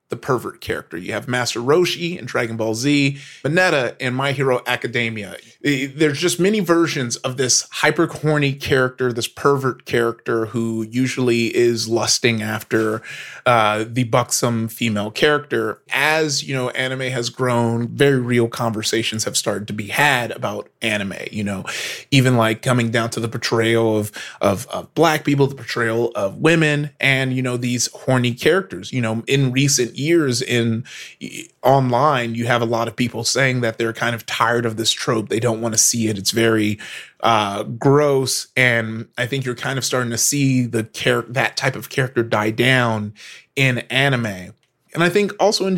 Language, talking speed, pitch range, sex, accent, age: English, 175 wpm, 115-140 Hz, male, American, 30-49